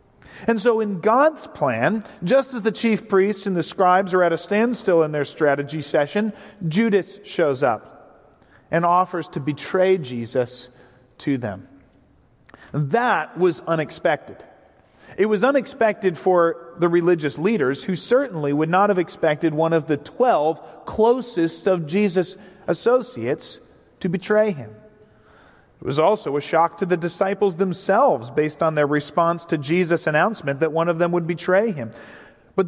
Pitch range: 160-210 Hz